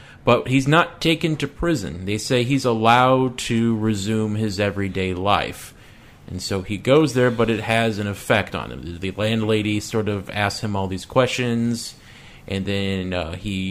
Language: English